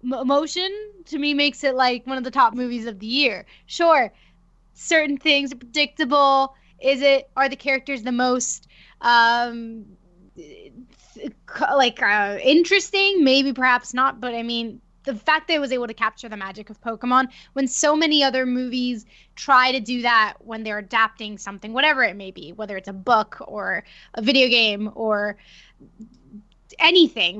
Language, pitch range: English, 220-300 Hz